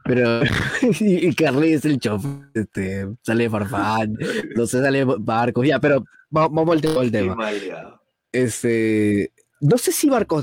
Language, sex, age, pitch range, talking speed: Spanish, male, 20-39, 110-150 Hz, 125 wpm